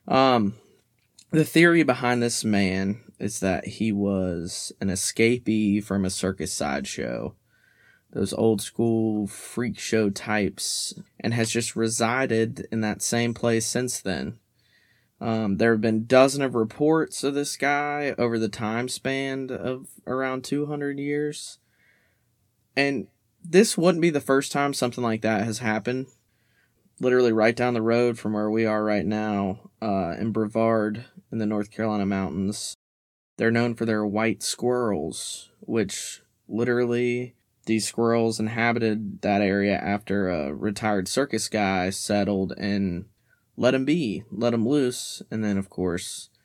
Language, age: English, 20-39